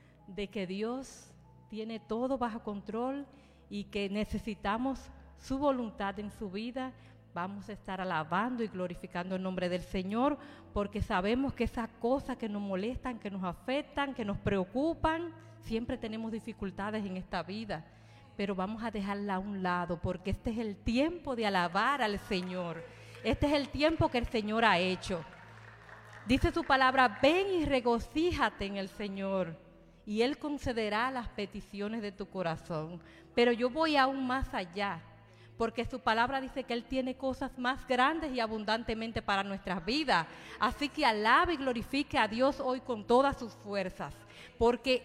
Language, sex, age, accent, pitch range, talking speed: Spanish, female, 40-59, American, 185-255 Hz, 160 wpm